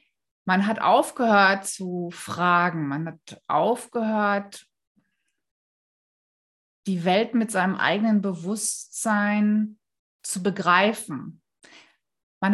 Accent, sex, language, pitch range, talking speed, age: German, female, German, 185-230 Hz, 80 wpm, 30-49